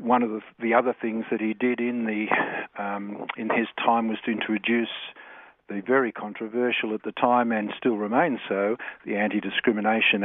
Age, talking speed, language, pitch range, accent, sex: 50-69, 160 wpm, English, 105-120 Hz, Australian, male